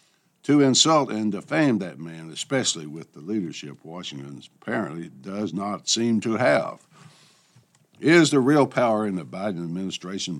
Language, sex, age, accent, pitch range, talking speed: English, male, 60-79, American, 90-125 Hz, 145 wpm